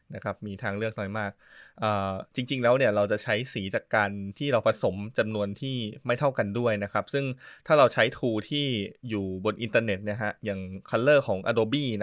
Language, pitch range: Thai, 100-130 Hz